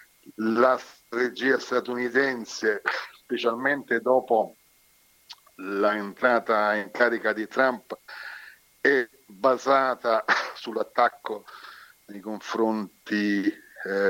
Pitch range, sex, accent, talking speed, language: 100-120 Hz, male, native, 70 wpm, Italian